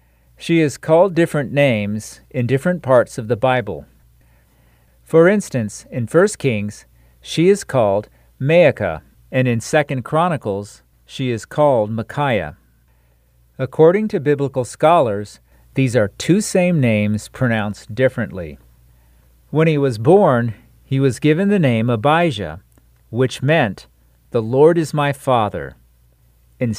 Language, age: English, 50-69